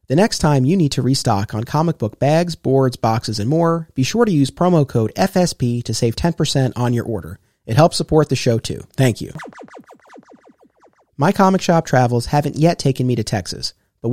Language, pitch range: English, 120-160 Hz